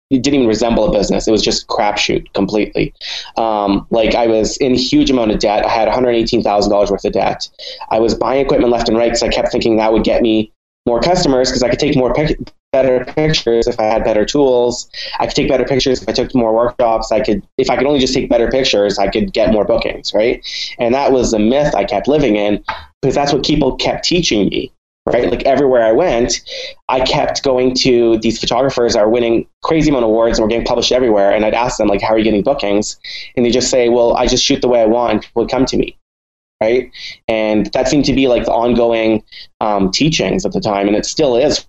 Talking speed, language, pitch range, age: 240 wpm, English, 110-130 Hz, 20-39